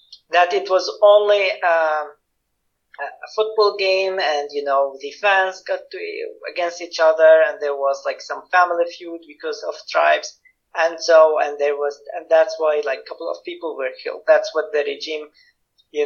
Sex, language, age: male, English, 40-59